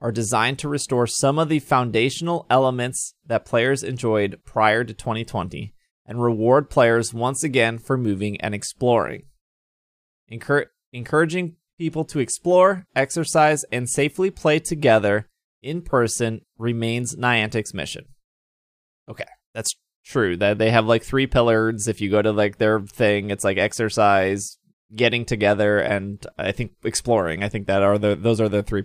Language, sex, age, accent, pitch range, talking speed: English, male, 20-39, American, 110-155 Hz, 150 wpm